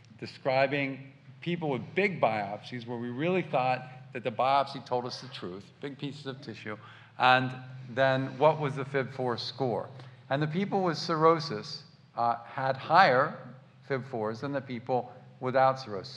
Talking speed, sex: 150 wpm, male